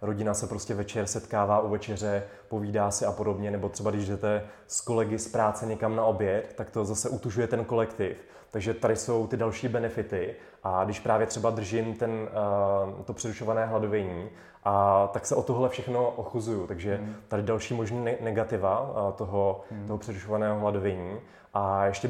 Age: 20-39